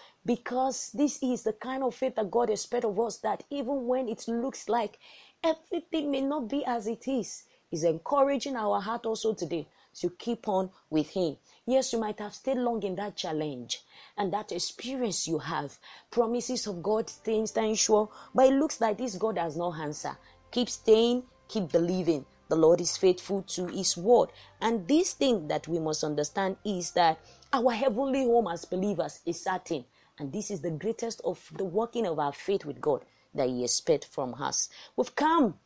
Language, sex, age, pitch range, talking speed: English, female, 30-49, 170-240 Hz, 190 wpm